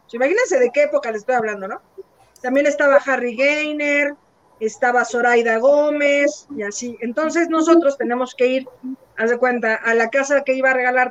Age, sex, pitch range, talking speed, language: 40-59, female, 245-300 Hz, 175 wpm, Spanish